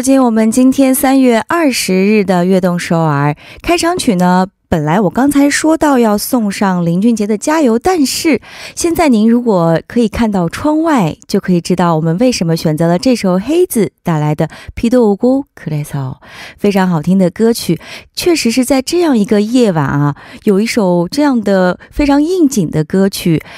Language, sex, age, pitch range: Korean, female, 20-39, 175-255 Hz